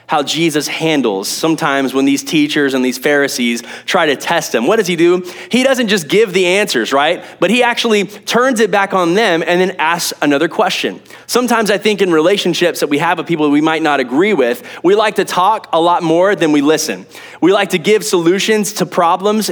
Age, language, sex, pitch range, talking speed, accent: 20-39, English, male, 150-205 Hz, 220 wpm, American